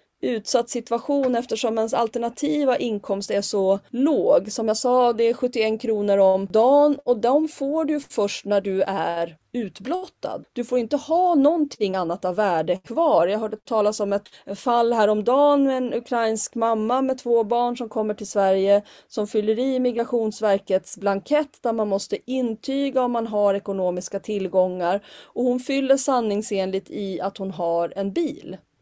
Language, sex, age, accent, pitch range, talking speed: Swedish, female, 30-49, native, 205-260 Hz, 165 wpm